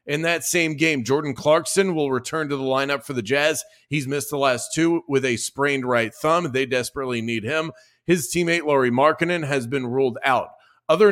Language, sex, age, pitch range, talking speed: English, male, 40-59, 125-160 Hz, 200 wpm